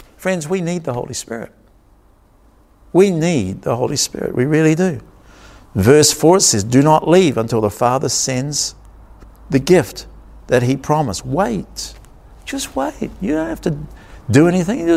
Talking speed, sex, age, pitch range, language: 150 wpm, male, 50-69, 140-190 Hz, English